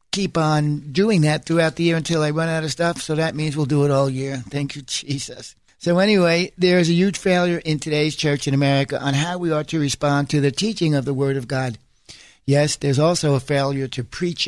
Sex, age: male, 60-79